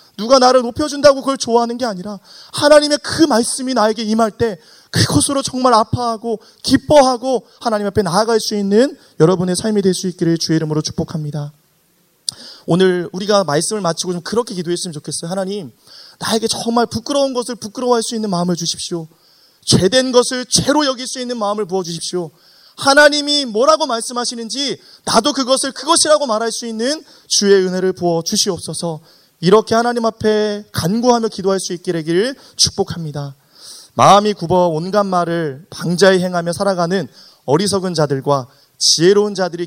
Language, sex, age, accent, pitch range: Korean, male, 30-49, native, 160-230 Hz